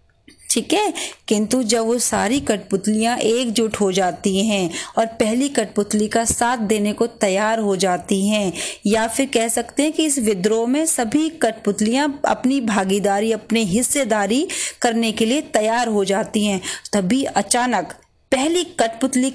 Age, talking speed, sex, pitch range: 30-49, 150 wpm, female, 210-275 Hz